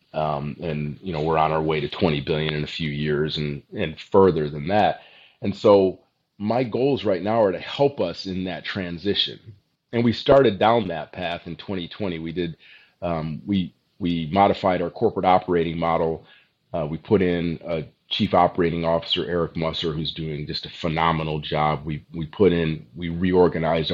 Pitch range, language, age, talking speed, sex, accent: 80-90 Hz, English, 30-49, 185 wpm, male, American